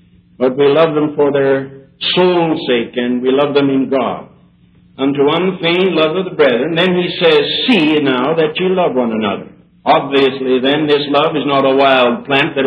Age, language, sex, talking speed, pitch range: 60-79, English, male, 190 wpm, 130-175 Hz